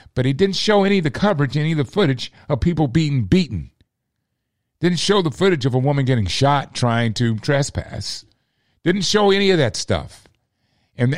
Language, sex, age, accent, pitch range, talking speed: English, male, 50-69, American, 125-170 Hz, 190 wpm